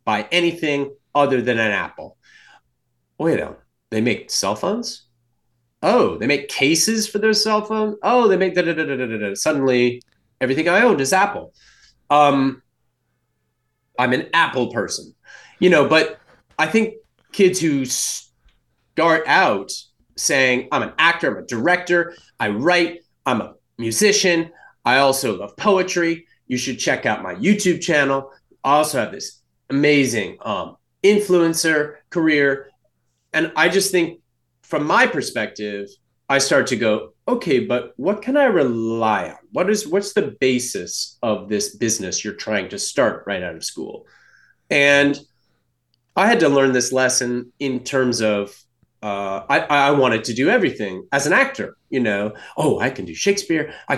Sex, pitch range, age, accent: male, 115-170 Hz, 30-49, American